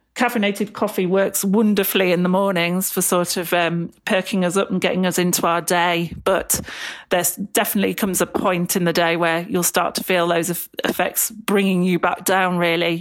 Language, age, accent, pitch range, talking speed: English, 40-59, British, 170-195 Hz, 190 wpm